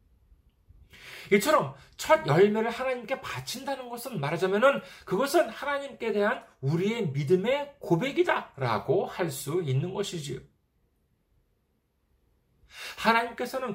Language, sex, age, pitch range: Korean, male, 40-59, 155-240 Hz